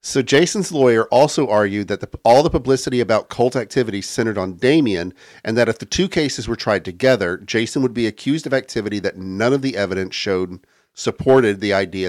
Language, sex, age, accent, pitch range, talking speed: English, male, 50-69, American, 105-140 Hz, 200 wpm